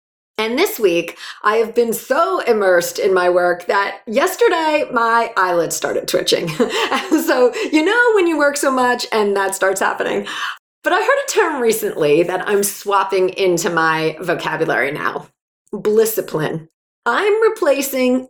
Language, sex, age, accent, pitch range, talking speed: English, female, 40-59, American, 195-295 Hz, 150 wpm